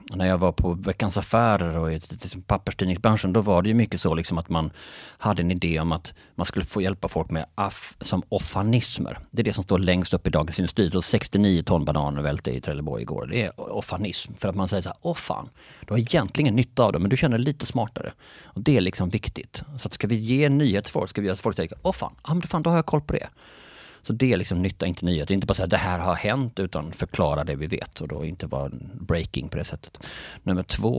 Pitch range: 90-120 Hz